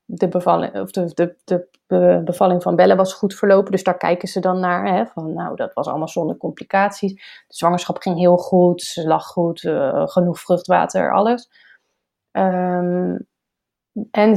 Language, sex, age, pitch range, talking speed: Dutch, female, 30-49, 180-210 Hz, 165 wpm